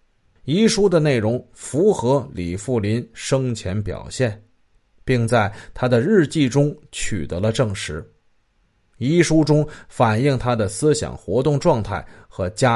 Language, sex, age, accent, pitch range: Chinese, male, 30-49, native, 105-145 Hz